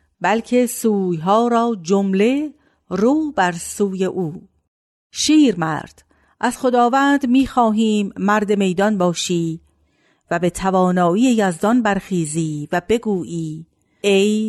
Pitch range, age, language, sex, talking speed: 165-225 Hz, 50-69, Persian, female, 100 wpm